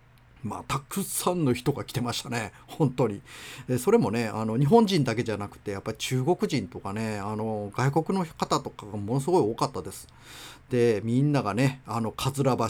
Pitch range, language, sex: 110-140 Hz, Japanese, male